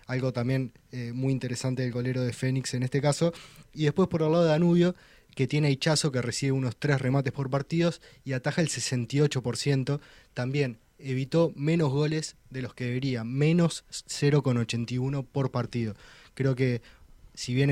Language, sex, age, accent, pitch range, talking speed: Spanish, male, 20-39, Argentinian, 125-145 Hz, 170 wpm